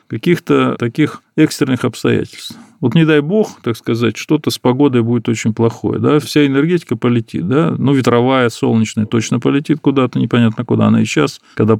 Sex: male